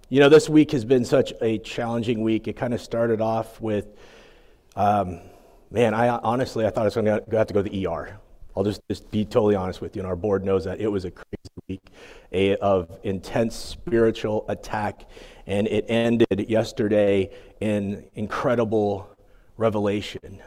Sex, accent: male, American